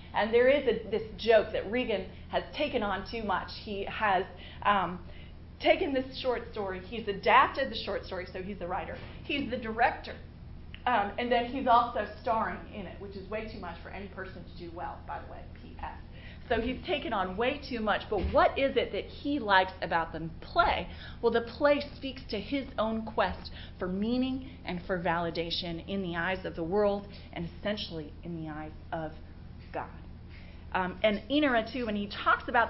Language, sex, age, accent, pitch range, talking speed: English, female, 30-49, American, 190-260 Hz, 195 wpm